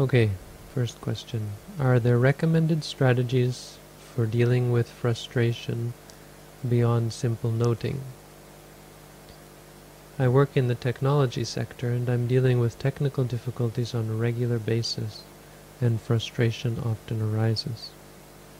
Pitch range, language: 115-140 Hz, English